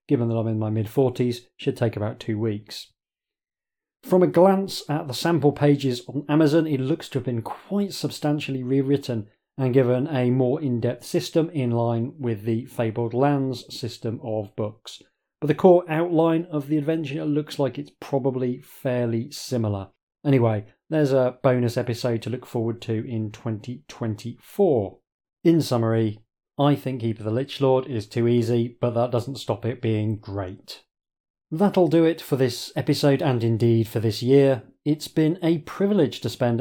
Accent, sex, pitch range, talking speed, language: British, male, 115-140 Hz, 170 wpm, English